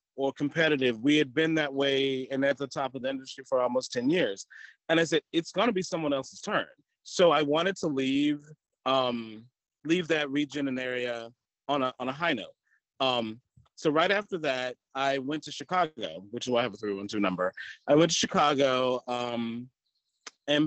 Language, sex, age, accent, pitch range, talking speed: English, male, 30-49, American, 125-155 Hz, 195 wpm